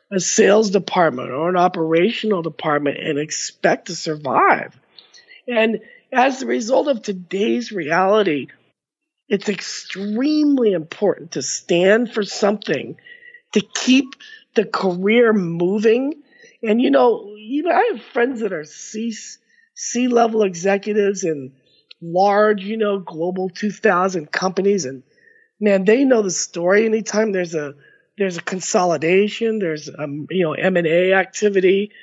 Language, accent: English, American